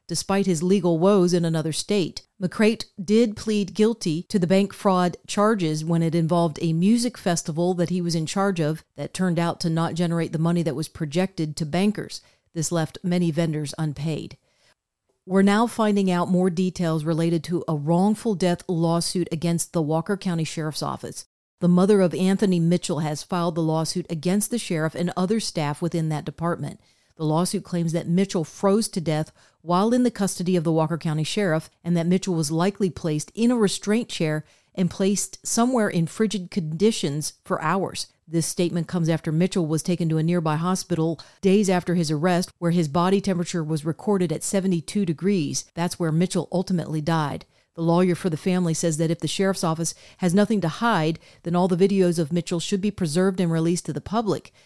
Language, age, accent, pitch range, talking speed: English, 40-59, American, 165-195 Hz, 190 wpm